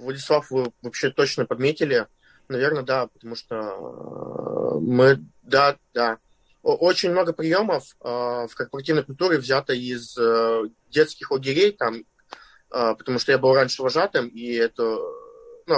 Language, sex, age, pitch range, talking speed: Russian, male, 20-39, 125-160 Hz, 115 wpm